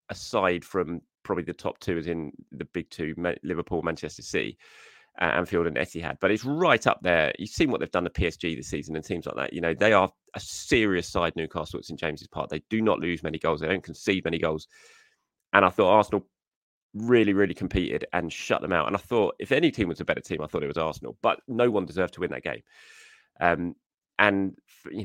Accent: British